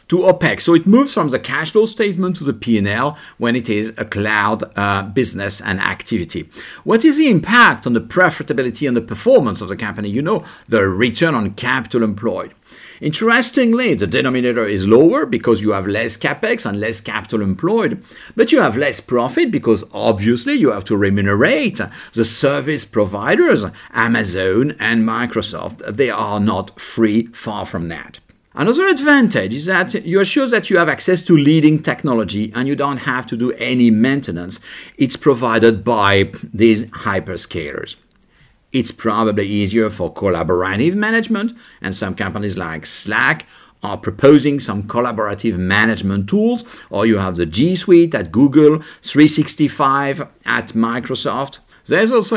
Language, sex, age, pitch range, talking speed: English, male, 50-69, 105-160 Hz, 155 wpm